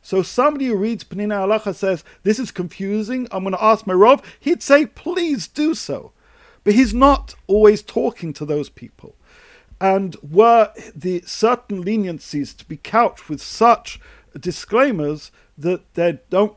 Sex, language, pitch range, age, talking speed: male, English, 160-215 Hz, 50-69, 155 wpm